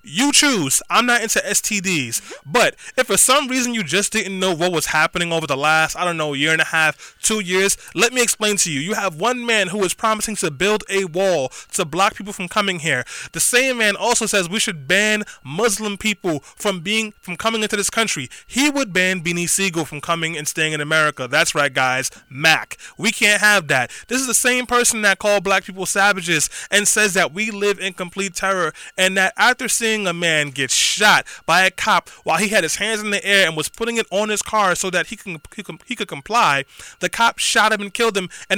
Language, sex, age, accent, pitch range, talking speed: English, male, 20-39, American, 175-225 Hz, 230 wpm